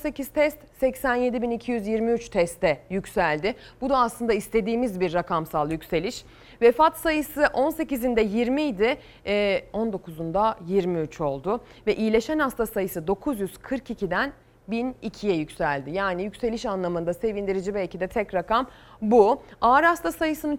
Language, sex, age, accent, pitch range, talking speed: Turkish, female, 30-49, native, 195-290 Hz, 110 wpm